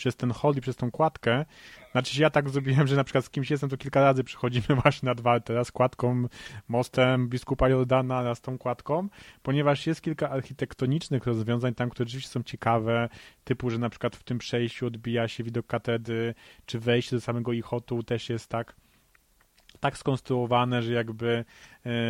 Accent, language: native, Polish